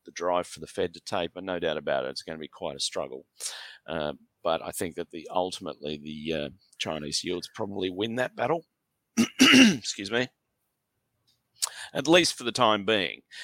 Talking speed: 180 wpm